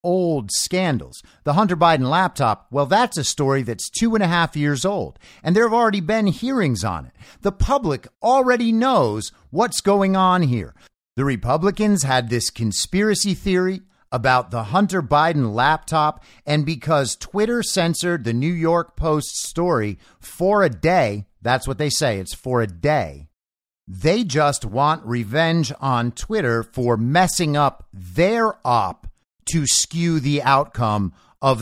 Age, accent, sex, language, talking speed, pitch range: 50-69, American, male, English, 150 wpm, 115-185 Hz